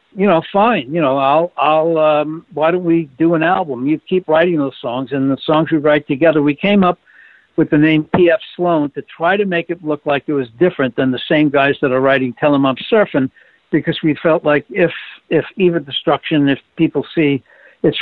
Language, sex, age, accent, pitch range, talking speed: English, male, 60-79, American, 135-170 Hz, 220 wpm